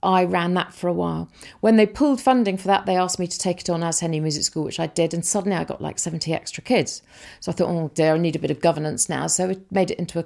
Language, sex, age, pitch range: English, female, 40-59, 170-205 Hz